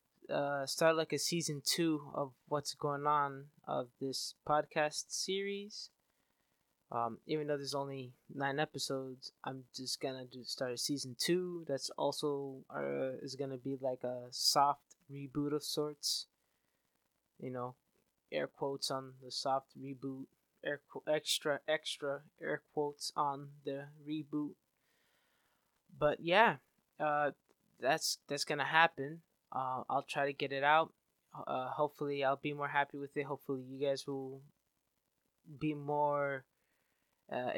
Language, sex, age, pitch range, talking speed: English, male, 20-39, 135-150 Hz, 140 wpm